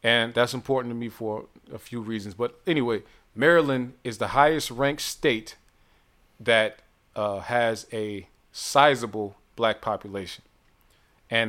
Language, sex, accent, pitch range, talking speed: English, male, American, 110-150 Hz, 130 wpm